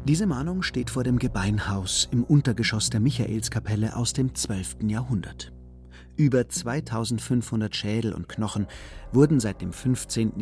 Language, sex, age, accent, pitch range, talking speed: German, male, 40-59, German, 95-135 Hz, 130 wpm